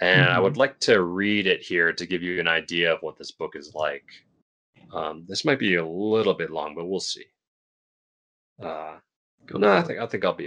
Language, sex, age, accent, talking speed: English, male, 30-49, American, 220 wpm